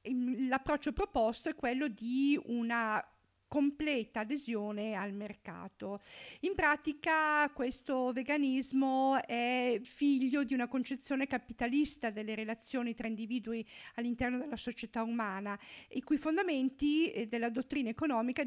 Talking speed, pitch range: 115 wpm, 225-280 Hz